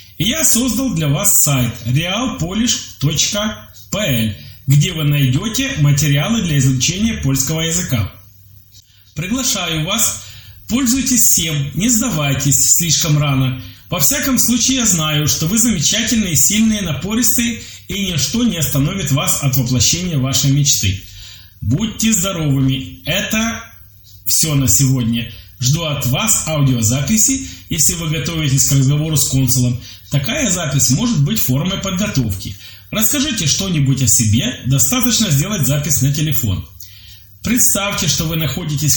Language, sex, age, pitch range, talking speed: Polish, male, 30-49, 120-190 Hz, 120 wpm